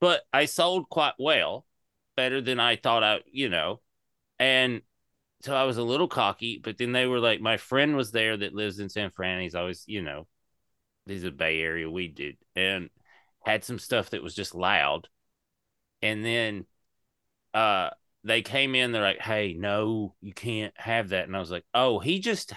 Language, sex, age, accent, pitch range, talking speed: English, male, 30-49, American, 95-125 Hz, 195 wpm